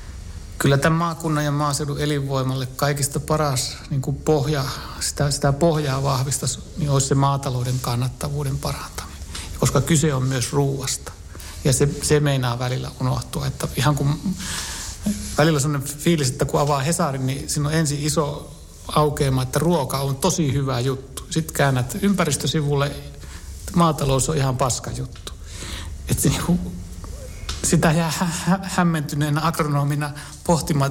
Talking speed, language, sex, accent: 135 wpm, Finnish, male, native